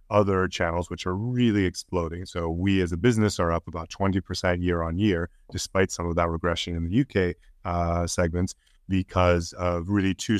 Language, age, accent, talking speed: English, 30-49, American, 185 wpm